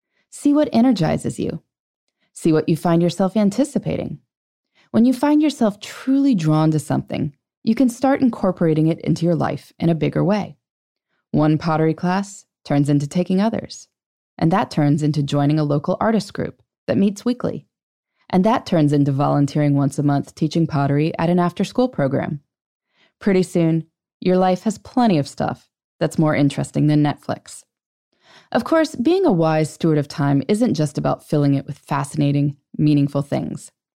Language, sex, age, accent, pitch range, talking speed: English, female, 20-39, American, 145-205 Hz, 165 wpm